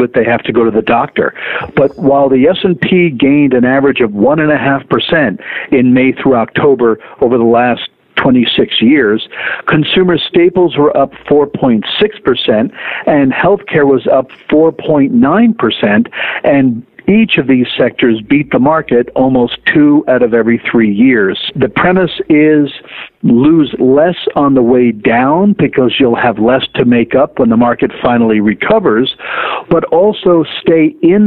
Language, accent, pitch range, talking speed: English, American, 120-160 Hz, 145 wpm